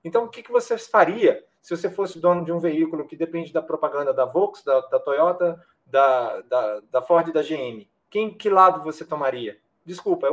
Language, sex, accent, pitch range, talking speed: Portuguese, male, Brazilian, 160-210 Hz, 210 wpm